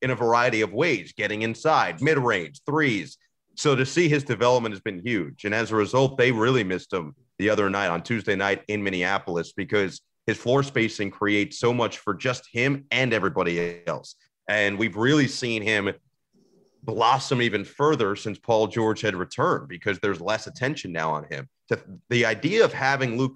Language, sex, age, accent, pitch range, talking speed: English, male, 30-49, American, 105-130 Hz, 185 wpm